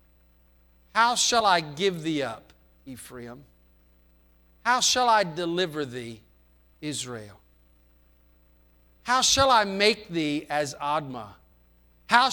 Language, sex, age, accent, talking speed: English, male, 50-69, American, 100 wpm